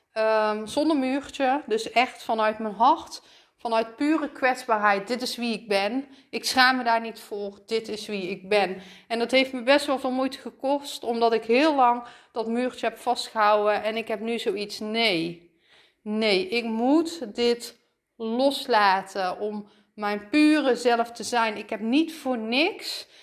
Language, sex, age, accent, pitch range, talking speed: Dutch, female, 30-49, Dutch, 210-255 Hz, 170 wpm